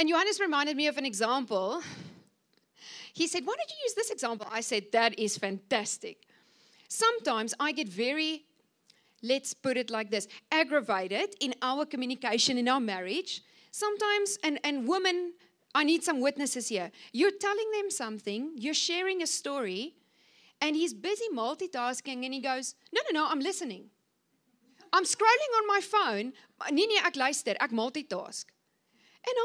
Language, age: English, 40-59